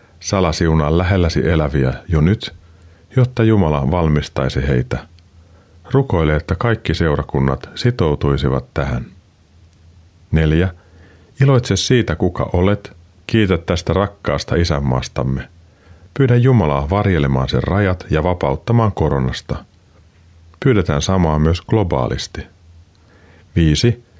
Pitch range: 80-100 Hz